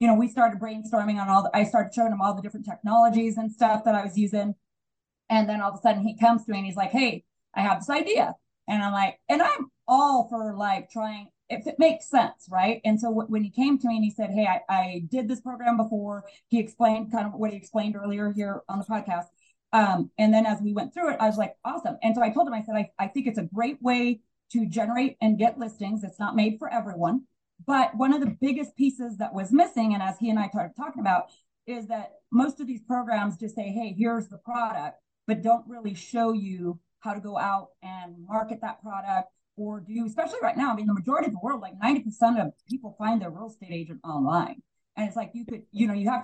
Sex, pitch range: female, 205-235 Hz